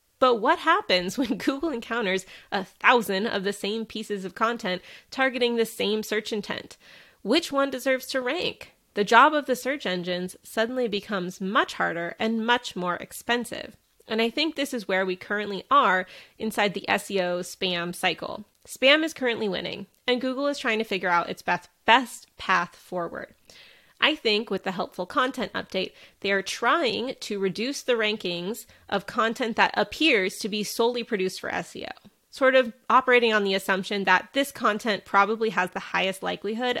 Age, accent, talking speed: 20-39, American, 170 wpm